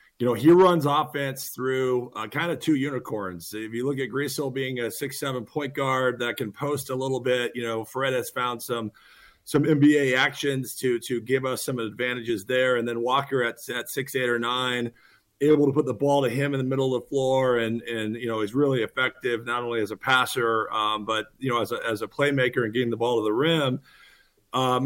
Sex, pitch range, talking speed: male, 120-140 Hz, 225 wpm